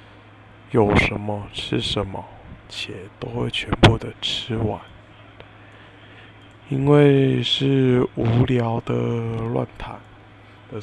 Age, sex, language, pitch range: 20-39, male, Chinese, 105-115 Hz